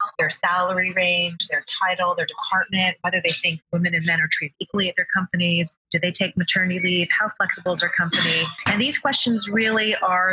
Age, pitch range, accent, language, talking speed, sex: 30-49, 160-200 Hz, American, English, 200 wpm, female